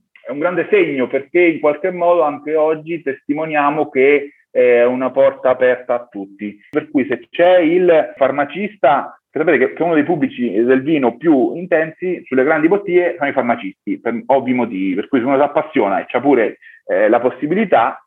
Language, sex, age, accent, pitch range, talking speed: Italian, male, 30-49, native, 130-200 Hz, 180 wpm